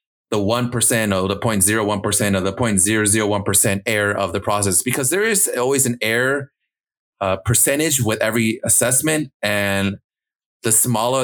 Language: English